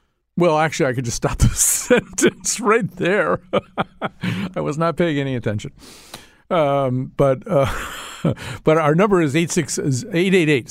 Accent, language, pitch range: American, English, 125-175 Hz